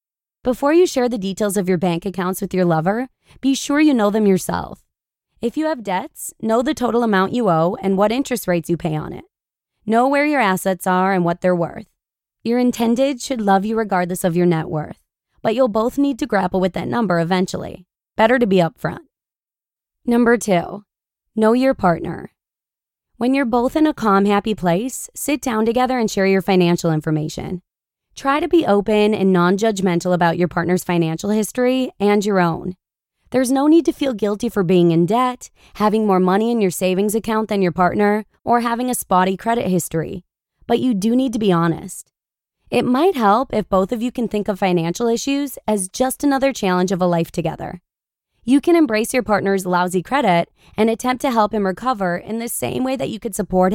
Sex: female